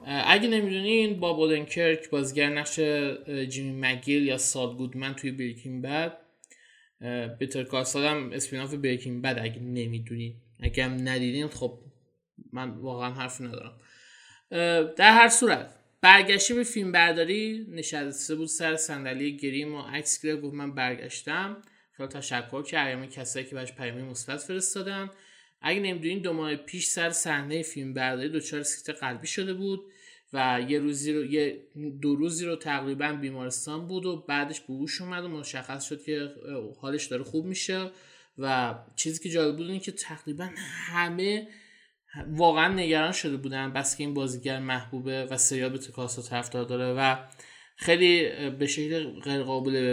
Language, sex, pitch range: Persian, male, 130-160 Hz